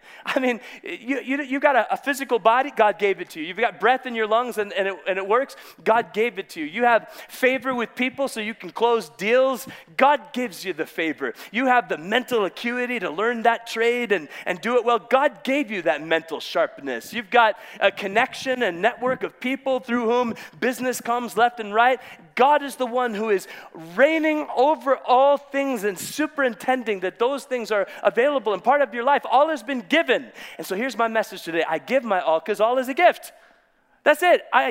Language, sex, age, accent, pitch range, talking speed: English, male, 30-49, American, 200-270 Hz, 220 wpm